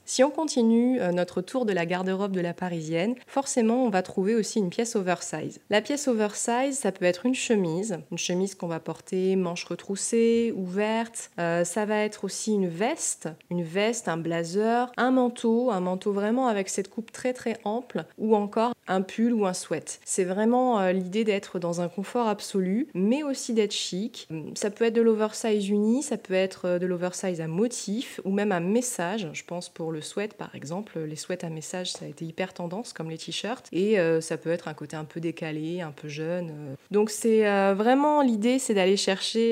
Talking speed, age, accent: 200 wpm, 20-39, French